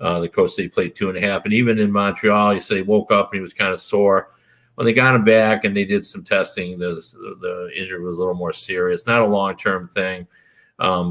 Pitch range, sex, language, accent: 90-110 Hz, male, English, American